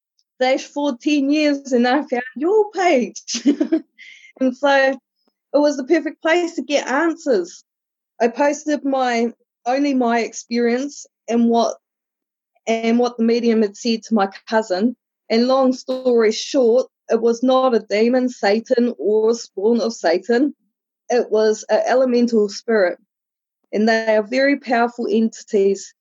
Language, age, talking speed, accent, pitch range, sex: English, 20-39, 140 wpm, Australian, 215-260 Hz, female